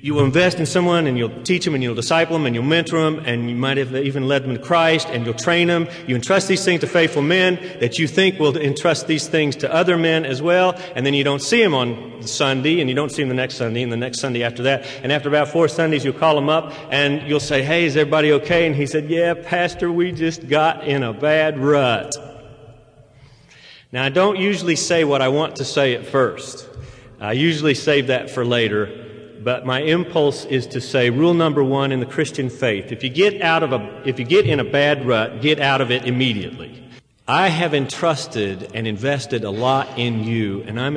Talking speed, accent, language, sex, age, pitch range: 235 wpm, American, English, male, 40-59, 125-155 Hz